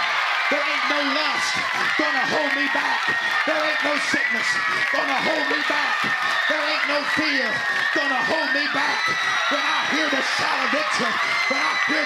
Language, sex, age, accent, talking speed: English, male, 40-59, American, 170 wpm